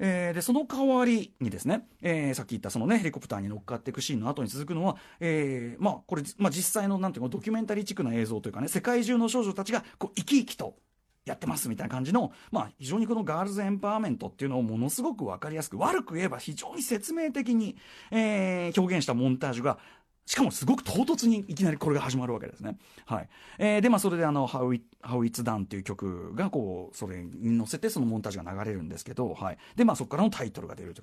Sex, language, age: male, Japanese, 40-59